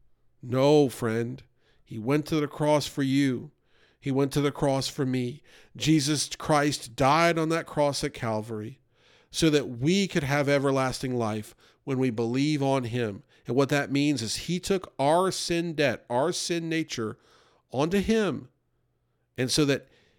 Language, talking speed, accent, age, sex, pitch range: English, 160 wpm, American, 50-69, male, 135-170 Hz